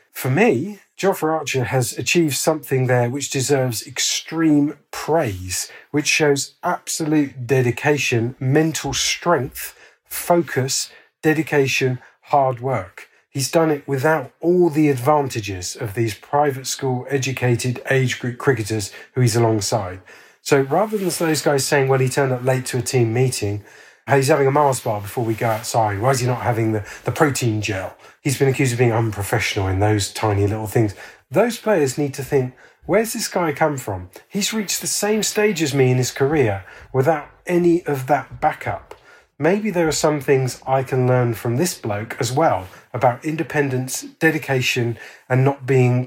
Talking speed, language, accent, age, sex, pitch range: 165 wpm, English, British, 40-59, male, 120-155 Hz